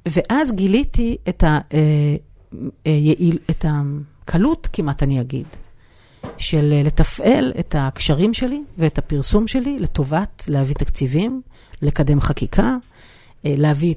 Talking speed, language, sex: 90 wpm, Hebrew, female